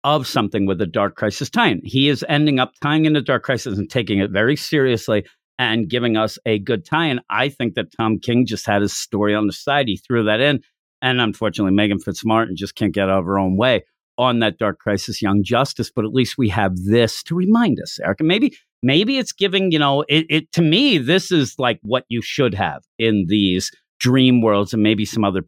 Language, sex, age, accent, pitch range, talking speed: English, male, 50-69, American, 105-140 Hz, 230 wpm